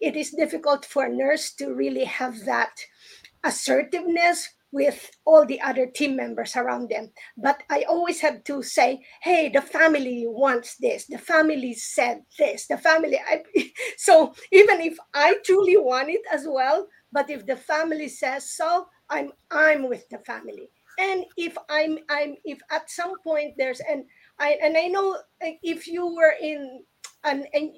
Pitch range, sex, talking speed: 265-330 Hz, female, 165 wpm